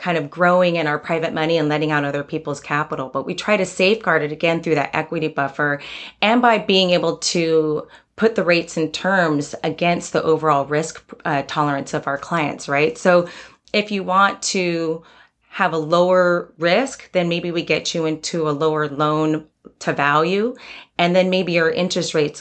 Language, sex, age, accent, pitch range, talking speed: English, female, 30-49, American, 155-185 Hz, 185 wpm